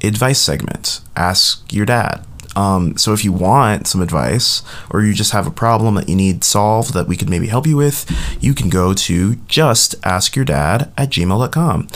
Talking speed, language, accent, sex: 185 wpm, English, American, male